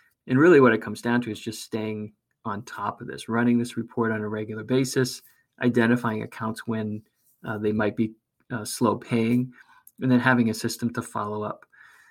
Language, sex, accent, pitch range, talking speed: English, male, American, 110-125 Hz, 195 wpm